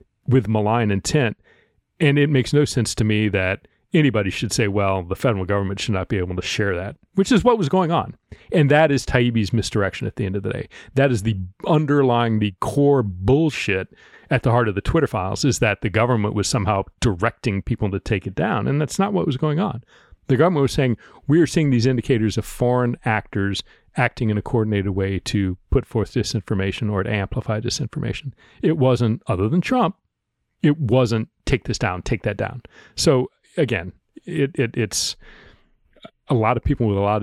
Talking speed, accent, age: 200 wpm, American, 40-59